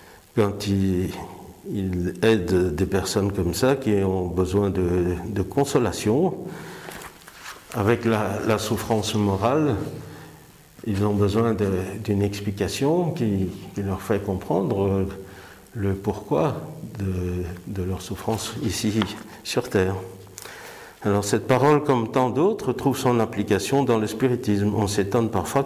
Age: 50-69